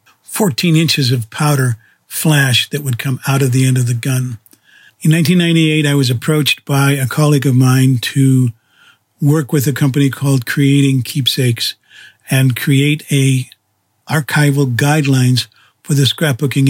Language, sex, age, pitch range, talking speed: English, male, 50-69, 130-150 Hz, 145 wpm